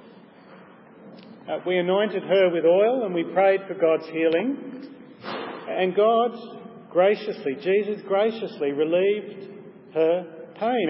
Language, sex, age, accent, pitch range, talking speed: English, male, 40-59, Australian, 165-195 Hz, 110 wpm